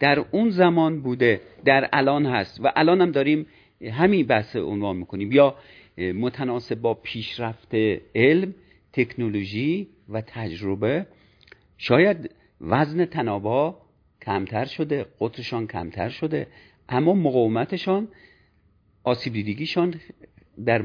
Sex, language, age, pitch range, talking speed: male, Persian, 50-69, 105-150 Hz, 105 wpm